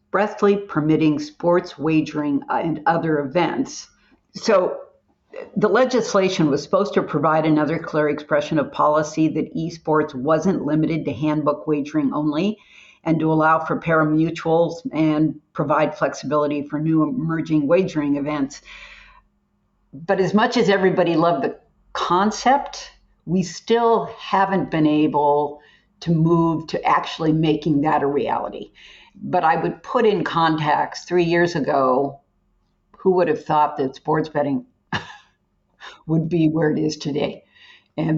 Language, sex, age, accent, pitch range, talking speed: English, female, 50-69, American, 150-180 Hz, 130 wpm